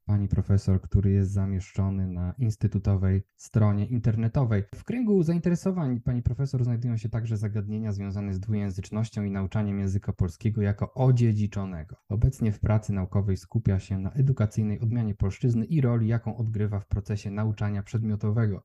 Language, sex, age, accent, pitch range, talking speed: Polish, male, 20-39, native, 100-125 Hz, 145 wpm